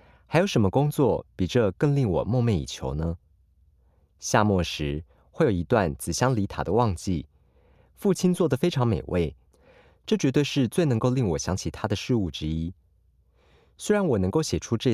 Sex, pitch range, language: male, 80-120 Hz, Chinese